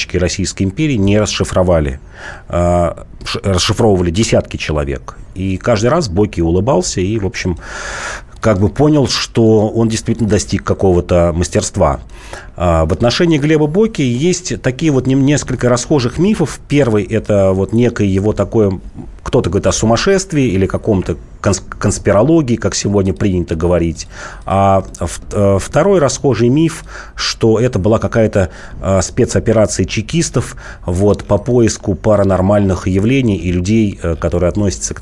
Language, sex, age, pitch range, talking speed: Russian, male, 40-59, 90-115 Hz, 125 wpm